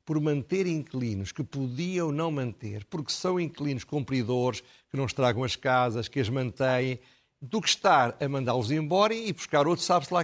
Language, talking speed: Portuguese, 175 wpm